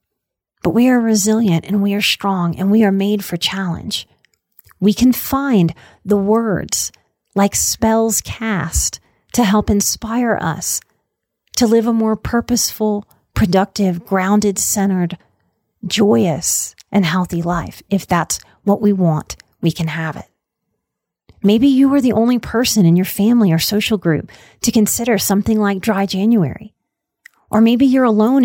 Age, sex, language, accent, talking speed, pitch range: 30-49, female, English, American, 145 wpm, 185-230 Hz